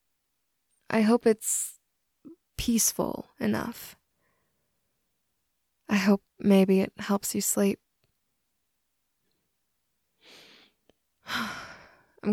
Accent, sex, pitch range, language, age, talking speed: American, female, 195-210 Hz, English, 20-39, 65 wpm